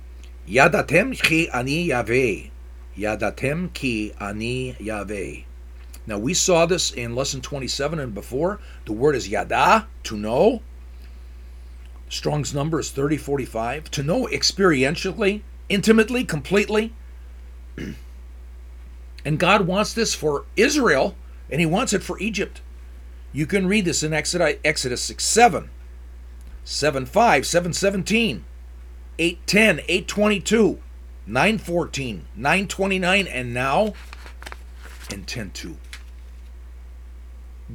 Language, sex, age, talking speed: English, male, 50-69, 95 wpm